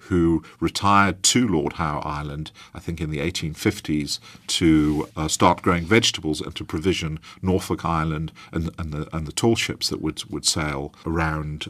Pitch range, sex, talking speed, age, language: 80-95 Hz, male, 170 wpm, 50-69, English